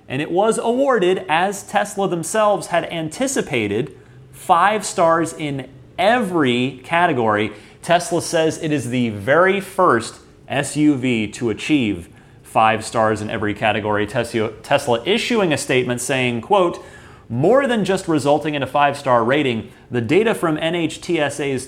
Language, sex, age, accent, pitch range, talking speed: English, male, 30-49, American, 120-190 Hz, 130 wpm